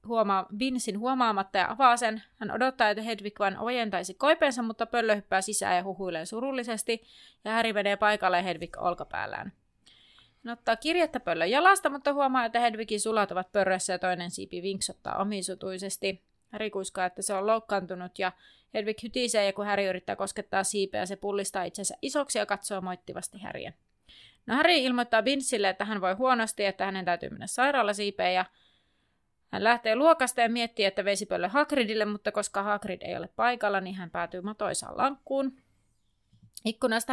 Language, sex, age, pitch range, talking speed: Finnish, female, 30-49, 190-235 Hz, 165 wpm